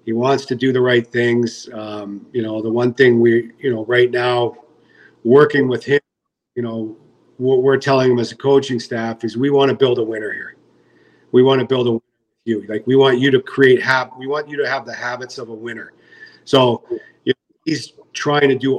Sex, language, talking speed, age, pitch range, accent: male, English, 215 wpm, 50-69, 115-135 Hz, American